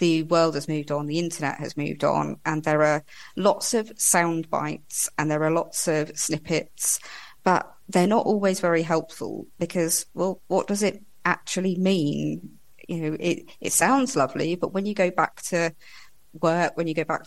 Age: 30-49